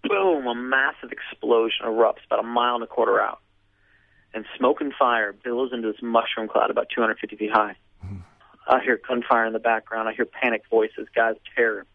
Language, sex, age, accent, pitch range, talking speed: English, male, 40-59, American, 105-140 Hz, 185 wpm